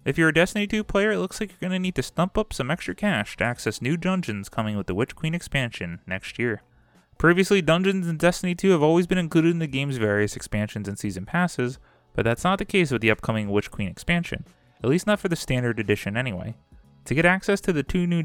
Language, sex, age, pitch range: English, male, 20-39, 105-170 Hz